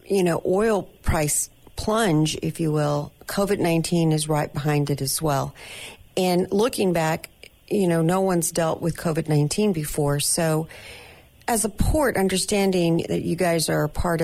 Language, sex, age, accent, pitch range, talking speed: English, female, 50-69, American, 150-195 Hz, 165 wpm